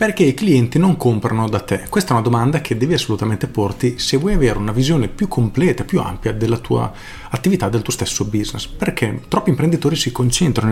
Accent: native